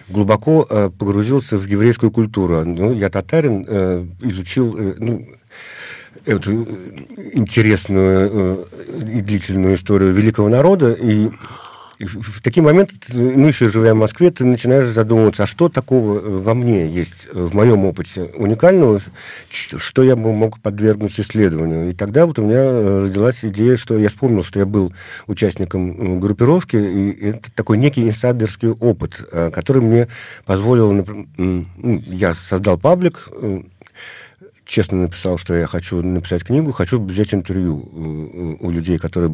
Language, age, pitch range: Russian, 50-69, 95-115 Hz